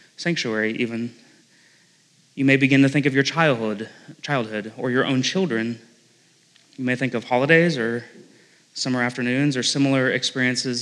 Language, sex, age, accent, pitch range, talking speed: English, male, 20-39, American, 120-150 Hz, 145 wpm